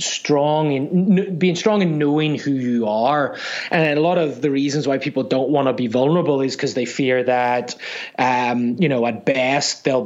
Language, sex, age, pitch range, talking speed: English, male, 20-39, 125-150 Hz, 195 wpm